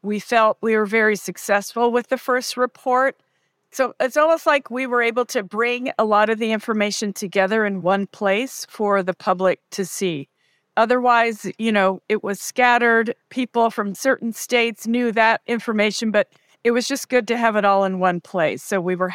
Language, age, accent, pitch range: English, 50-69, American, 185-230 Hz